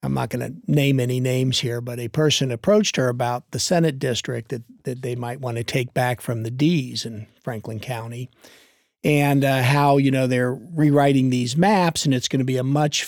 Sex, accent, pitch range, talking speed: male, American, 120-155 Hz, 215 wpm